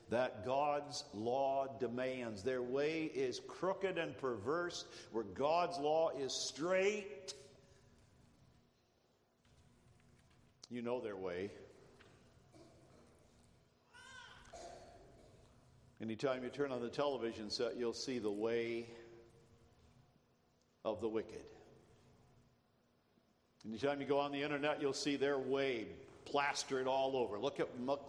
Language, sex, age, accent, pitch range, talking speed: English, male, 60-79, American, 125-165 Hz, 105 wpm